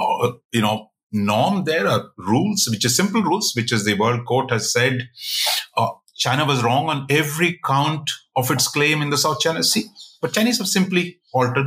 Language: English